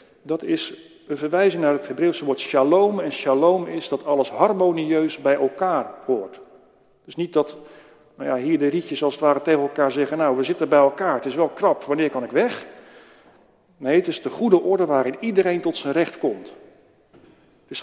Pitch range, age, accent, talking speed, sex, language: 145-180 Hz, 40-59, Dutch, 200 wpm, male, Dutch